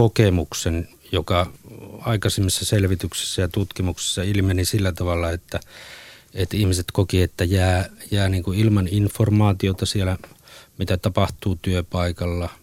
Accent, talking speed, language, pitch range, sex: native, 115 wpm, Finnish, 90-110 Hz, male